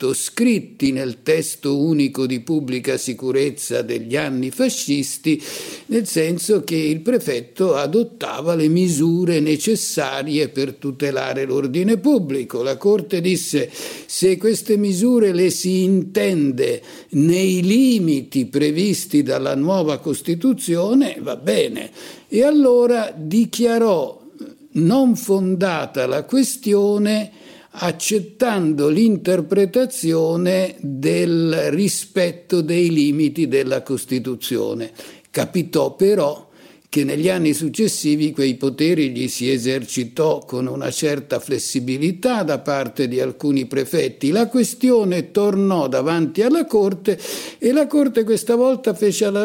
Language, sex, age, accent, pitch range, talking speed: Italian, male, 50-69, native, 145-215 Hz, 105 wpm